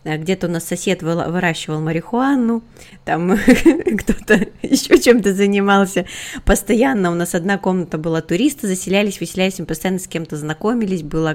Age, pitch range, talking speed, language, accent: 20-39, 165-210 Hz, 145 wpm, Russian, native